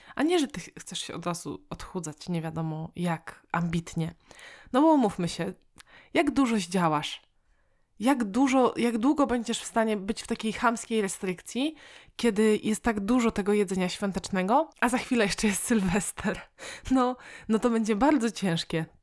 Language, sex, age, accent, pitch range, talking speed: Polish, female, 20-39, native, 180-230 Hz, 160 wpm